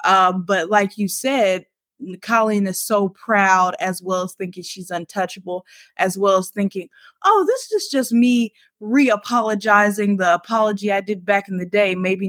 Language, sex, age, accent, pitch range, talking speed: English, female, 20-39, American, 190-275 Hz, 165 wpm